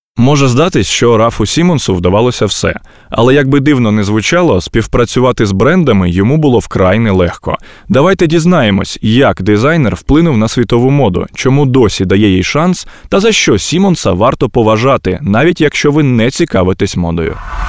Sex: male